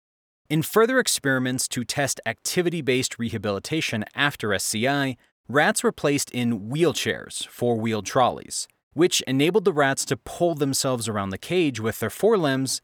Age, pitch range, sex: 30-49, 105-145 Hz, male